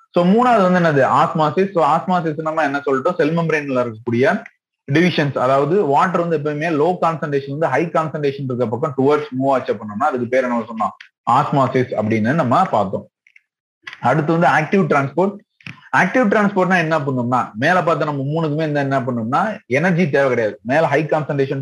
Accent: native